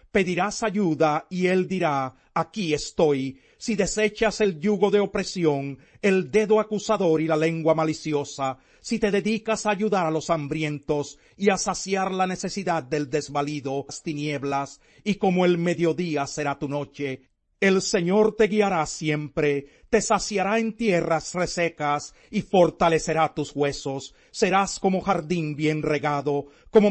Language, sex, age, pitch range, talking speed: Spanish, male, 40-59, 150-200 Hz, 145 wpm